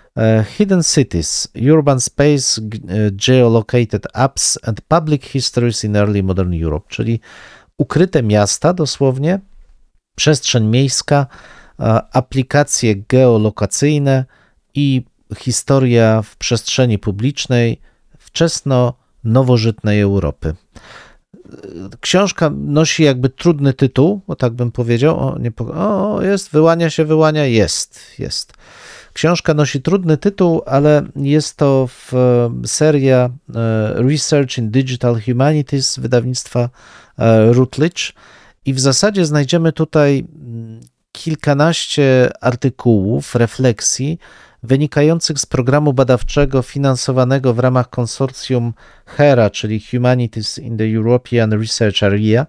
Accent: native